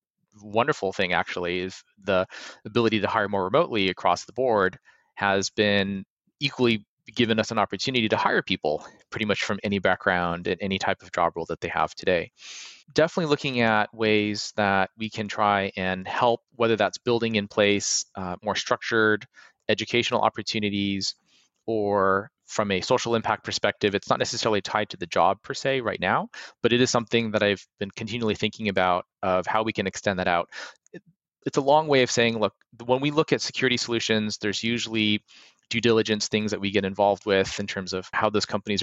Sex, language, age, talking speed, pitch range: male, English, 30-49, 185 wpm, 100-115 Hz